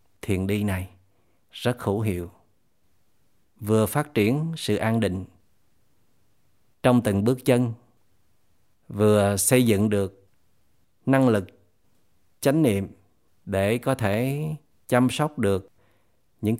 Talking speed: 110 wpm